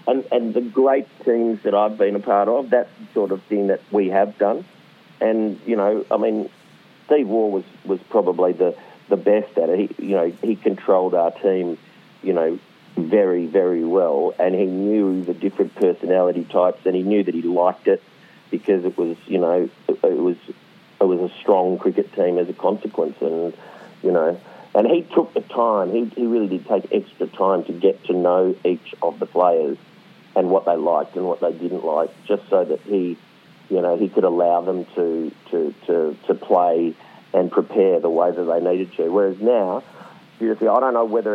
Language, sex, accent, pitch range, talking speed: English, male, Australian, 90-115 Hz, 200 wpm